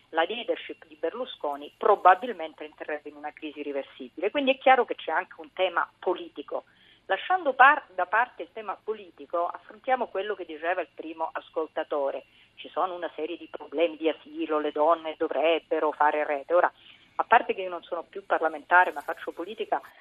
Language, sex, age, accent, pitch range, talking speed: Italian, female, 40-59, native, 165-235 Hz, 175 wpm